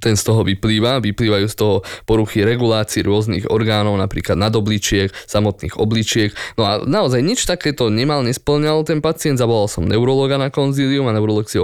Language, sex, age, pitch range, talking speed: Slovak, male, 20-39, 100-125 Hz, 175 wpm